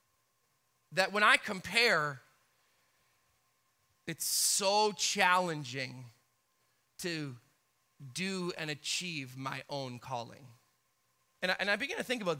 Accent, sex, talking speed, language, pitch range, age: American, male, 100 wpm, English, 150-190 Hz, 30-49